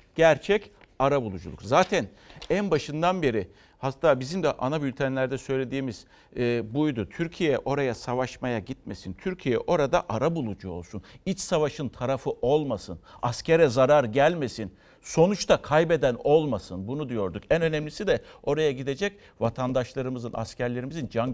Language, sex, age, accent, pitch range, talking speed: Turkish, male, 60-79, native, 115-155 Hz, 125 wpm